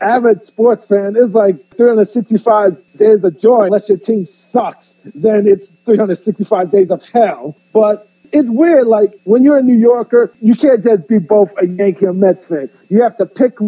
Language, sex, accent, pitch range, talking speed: English, male, American, 195-230 Hz, 185 wpm